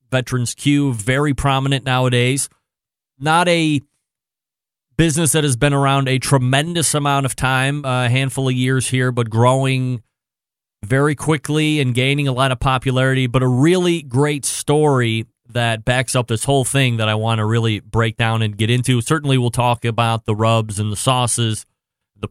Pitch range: 120-150 Hz